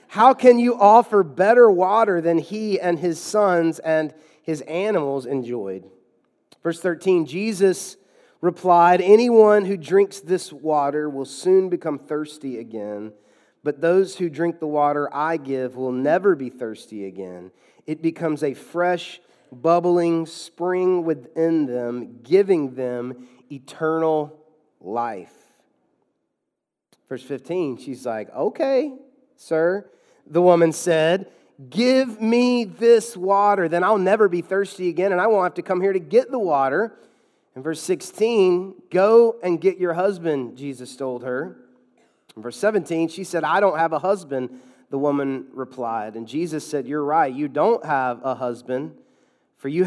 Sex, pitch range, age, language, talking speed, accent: male, 140-190 Hz, 30-49, English, 145 wpm, American